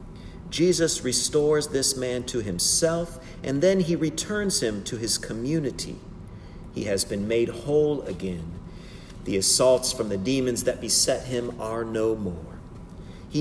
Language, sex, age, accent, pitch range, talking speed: English, male, 50-69, American, 110-150 Hz, 145 wpm